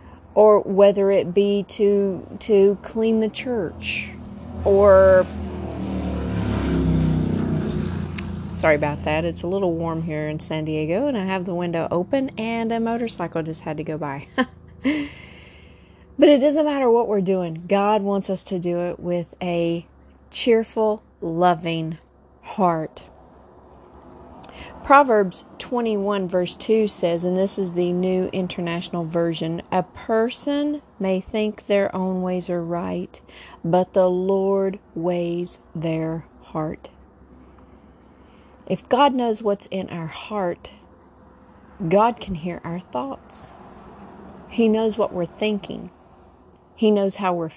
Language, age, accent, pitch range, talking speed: English, 40-59, American, 165-210 Hz, 125 wpm